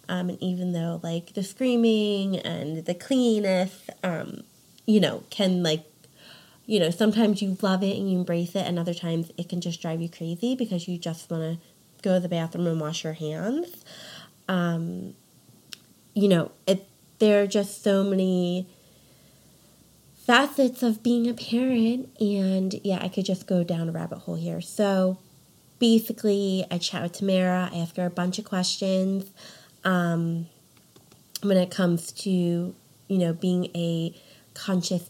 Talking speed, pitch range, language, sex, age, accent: 160 wpm, 170-200 Hz, English, female, 30-49, American